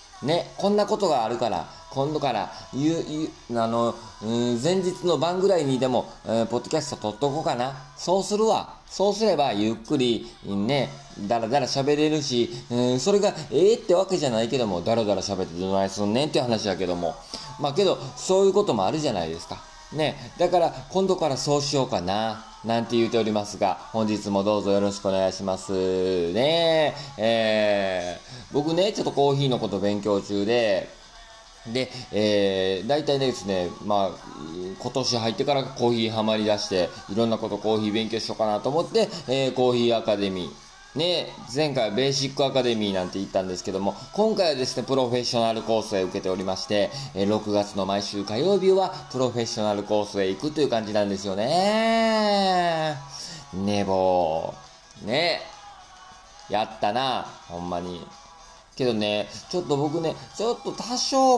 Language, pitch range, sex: Japanese, 100-155 Hz, male